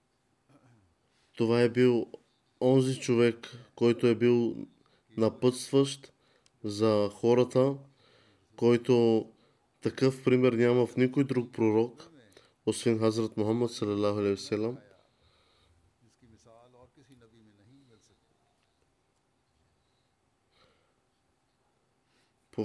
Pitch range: 110-125 Hz